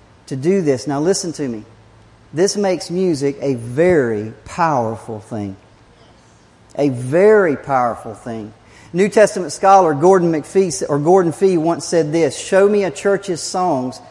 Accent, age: American, 40-59